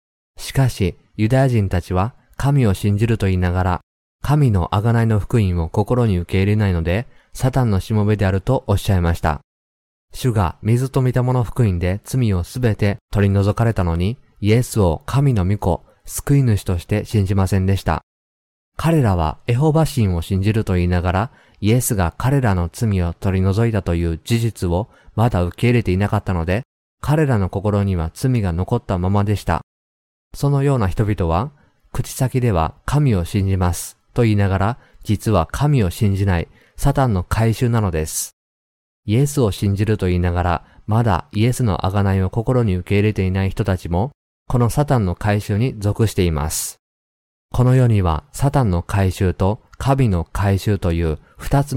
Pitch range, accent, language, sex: 90-115 Hz, native, Japanese, male